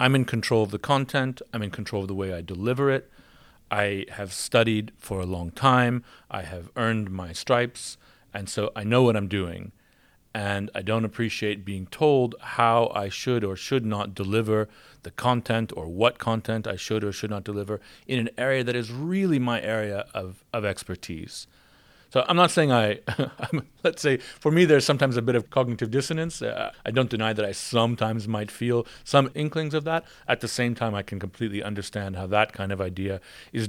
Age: 40-59